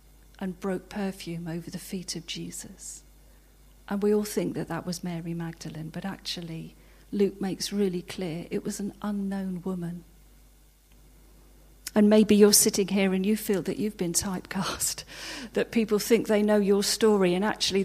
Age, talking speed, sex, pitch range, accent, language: 40-59, 165 wpm, female, 175-205 Hz, British, English